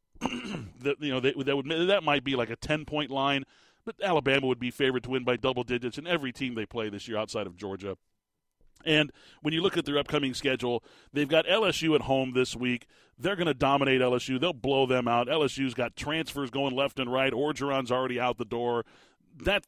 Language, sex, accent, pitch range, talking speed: English, male, American, 125-155 Hz, 215 wpm